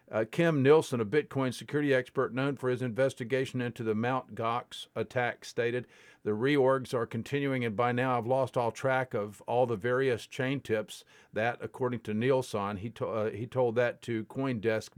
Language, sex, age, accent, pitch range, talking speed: English, male, 50-69, American, 115-135 Hz, 185 wpm